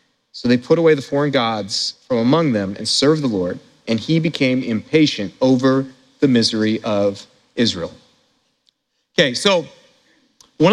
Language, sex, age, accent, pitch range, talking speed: English, male, 40-59, American, 165-240 Hz, 145 wpm